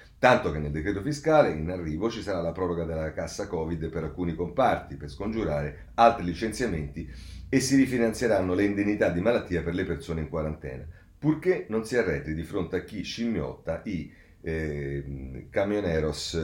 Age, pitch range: 40-59, 80-110 Hz